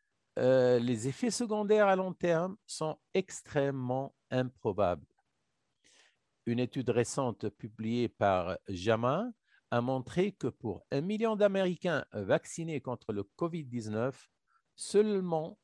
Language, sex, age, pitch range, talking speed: English, male, 50-69, 120-180 Hz, 105 wpm